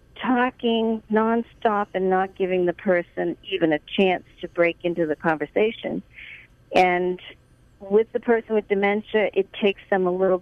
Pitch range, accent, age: 170-215 Hz, American, 50-69